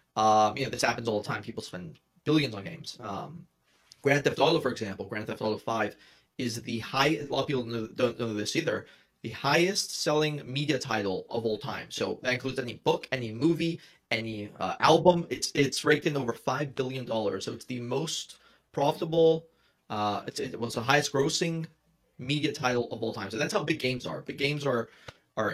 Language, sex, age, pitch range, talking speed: English, male, 30-49, 110-145 Hz, 205 wpm